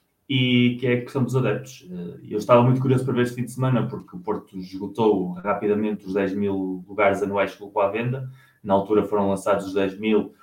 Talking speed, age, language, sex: 220 wpm, 20-39, Portuguese, male